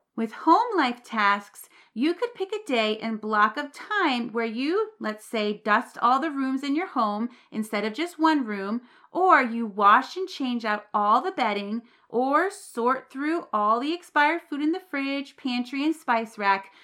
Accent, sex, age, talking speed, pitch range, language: American, female, 30-49, 185 wpm, 220-300 Hz, English